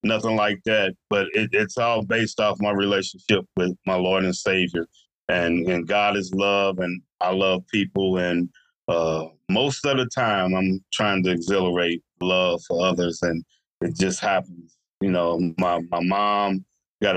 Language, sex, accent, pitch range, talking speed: English, male, American, 90-105 Hz, 165 wpm